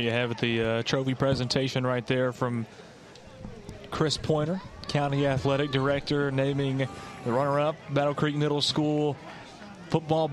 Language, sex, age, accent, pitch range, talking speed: English, male, 30-49, American, 120-145 Hz, 135 wpm